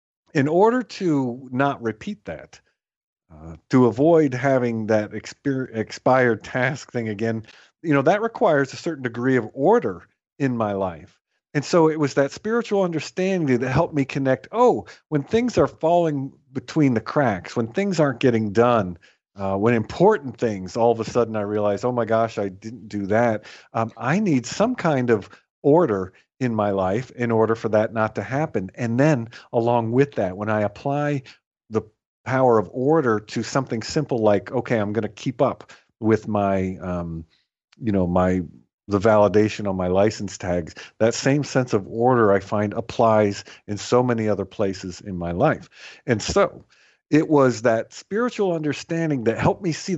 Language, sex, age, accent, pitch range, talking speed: English, male, 50-69, American, 105-145 Hz, 175 wpm